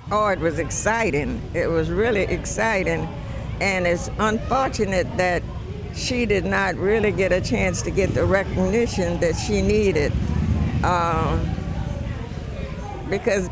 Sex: female